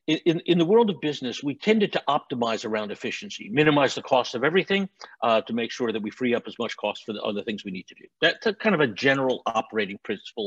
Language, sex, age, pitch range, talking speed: English, male, 50-69, 115-170 Hz, 245 wpm